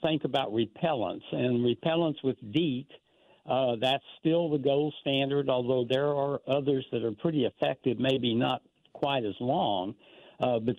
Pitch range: 125-160 Hz